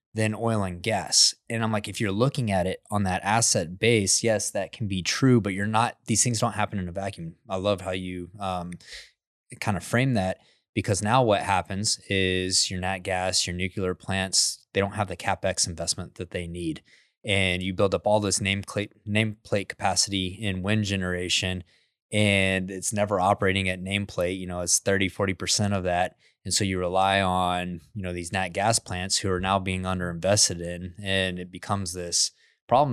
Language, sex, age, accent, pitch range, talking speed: English, male, 20-39, American, 90-110 Hz, 195 wpm